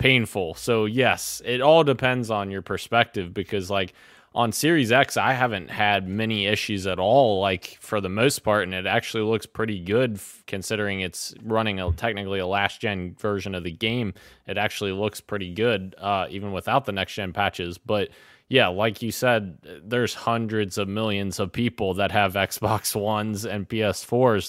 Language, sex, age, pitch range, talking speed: English, male, 20-39, 95-115 Hz, 180 wpm